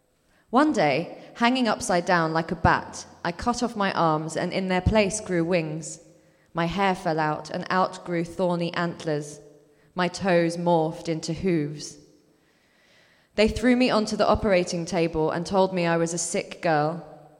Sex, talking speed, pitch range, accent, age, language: female, 165 wpm, 165-190 Hz, British, 20-39, English